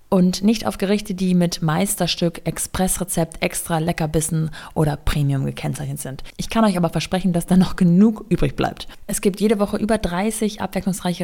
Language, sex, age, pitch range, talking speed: German, female, 20-39, 170-205 Hz, 170 wpm